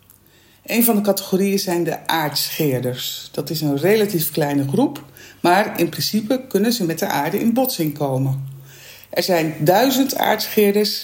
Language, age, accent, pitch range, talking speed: Dutch, 50-69, Dutch, 145-205 Hz, 150 wpm